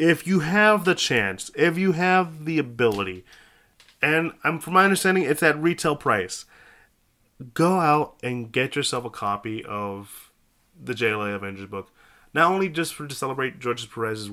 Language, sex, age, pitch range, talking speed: English, male, 20-39, 115-145 Hz, 165 wpm